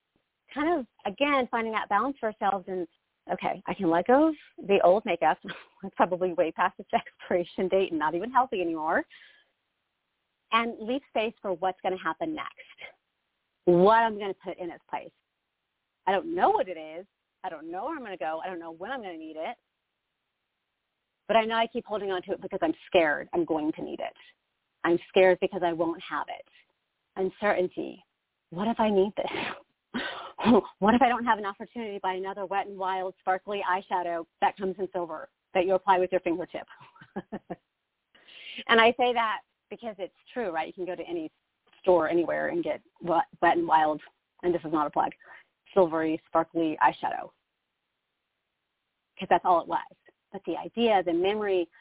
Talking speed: 190 wpm